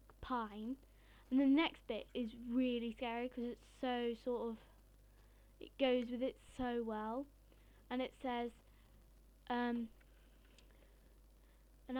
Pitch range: 230-260 Hz